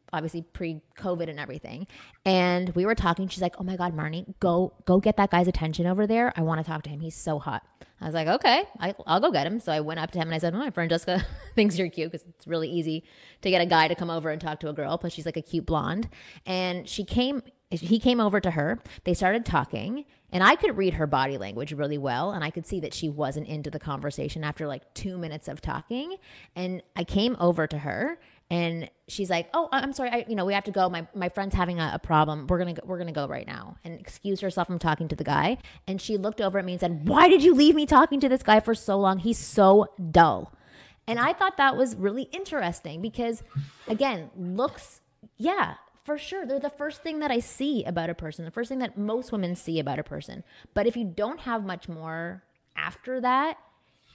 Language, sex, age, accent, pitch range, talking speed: English, female, 20-39, American, 165-230 Hz, 245 wpm